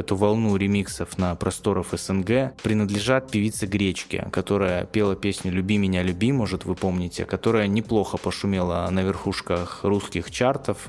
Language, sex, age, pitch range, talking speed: Russian, male, 20-39, 95-115 Hz, 140 wpm